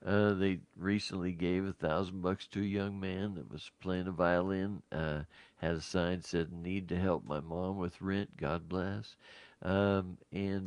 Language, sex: English, male